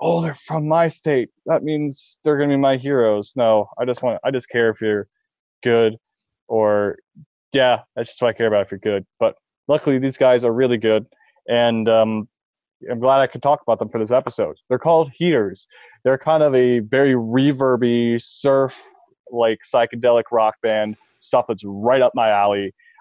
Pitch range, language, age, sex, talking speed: 110-135 Hz, English, 20-39, male, 190 wpm